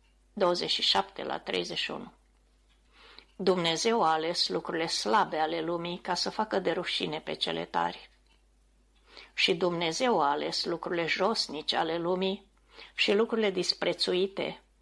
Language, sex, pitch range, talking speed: Romanian, female, 170-205 Hz, 115 wpm